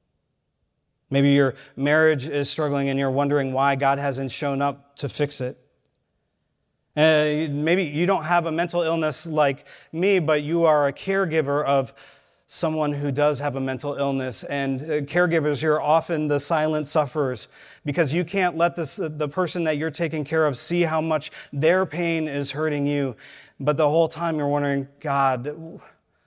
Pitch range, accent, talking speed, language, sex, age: 135-160 Hz, American, 160 wpm, English, male, 30-49